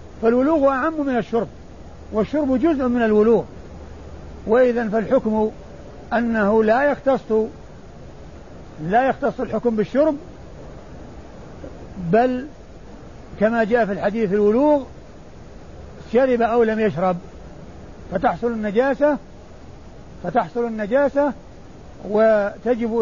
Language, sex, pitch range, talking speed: Arabic, male, 190-240 Hz, 85 wpm